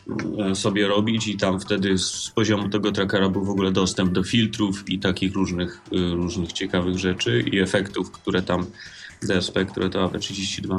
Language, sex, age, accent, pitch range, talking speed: Polish, male, 30-49, native, 95-115 Hz, 165 wpm